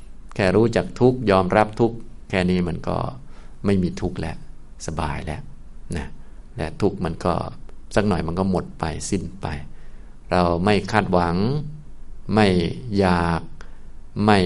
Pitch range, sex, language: 85-105 Hz, male, Thai